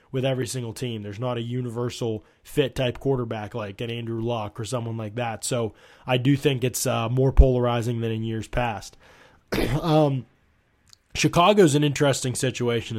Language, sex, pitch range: English, male, 120-150 Hz